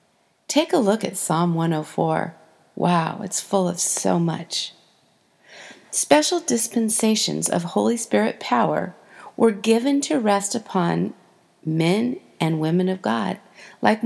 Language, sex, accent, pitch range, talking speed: English, female, American, 185-250 Hz, 125 wpm